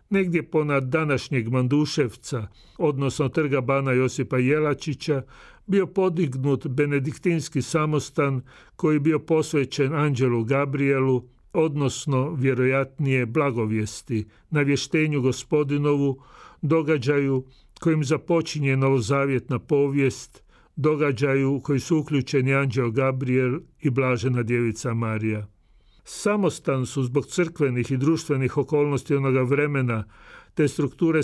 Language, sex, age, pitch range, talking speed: Croatian, male, 40-59, 130-150 Hz, 95 wpm